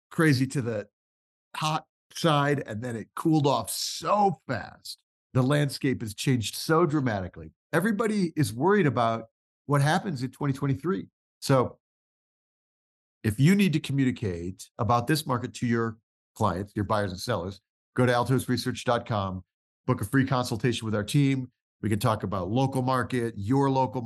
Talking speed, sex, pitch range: 150 wpm, male, 105-140 Hz